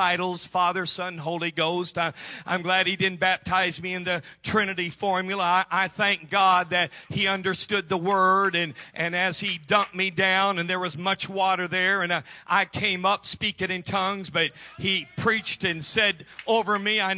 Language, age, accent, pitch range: English, 50-69, American, 185-220 Hz